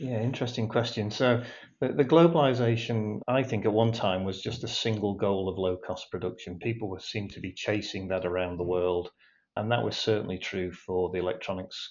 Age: 40-59